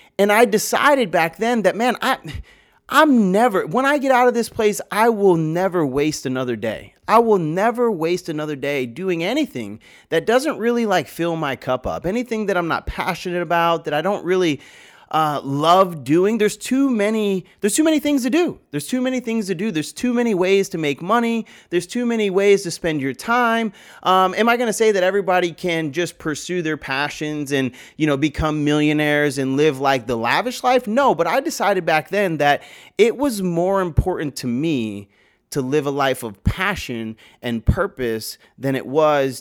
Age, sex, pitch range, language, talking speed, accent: 30-49, male, 130-200 Hz, English, 200 wpm, American